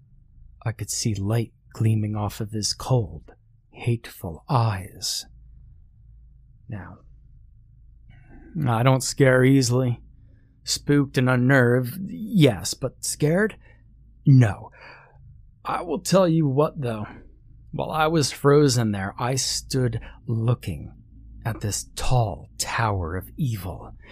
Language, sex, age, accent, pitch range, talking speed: English, male, 30-49, American, 110-135 Hz, 105 wpm